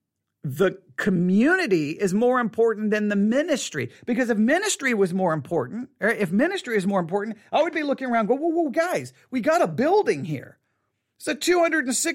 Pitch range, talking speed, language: 215-290 Hz, 185 wpm, English